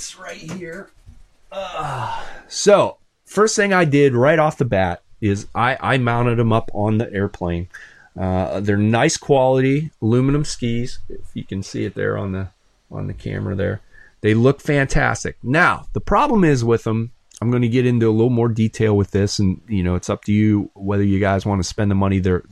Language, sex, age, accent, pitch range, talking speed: English, male, 30-49, American, 100-130 Hz, 200 wpm